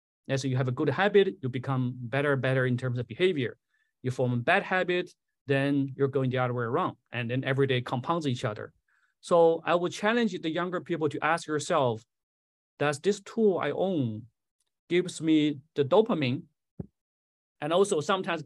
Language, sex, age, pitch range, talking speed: English, male, 30-49, 130-170 Hz, 180 wpm